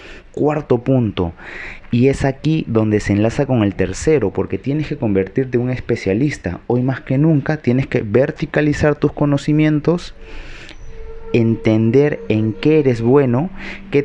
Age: 30-49